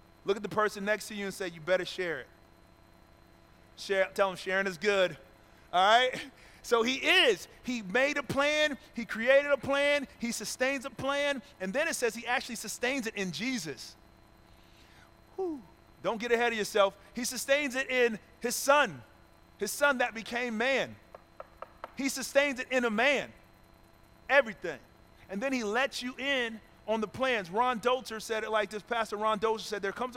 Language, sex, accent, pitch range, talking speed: English, male, American, 190-250 Hz, 180 wpm